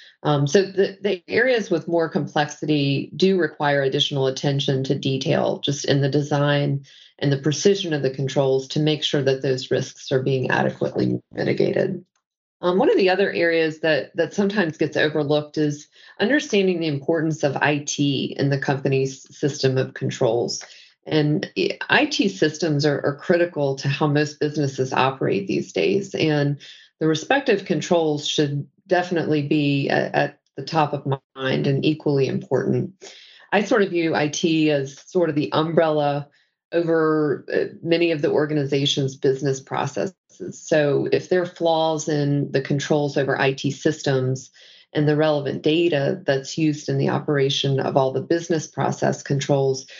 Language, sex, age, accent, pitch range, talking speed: English, female, 40-59, American, 140-165 Hz, 155 wpm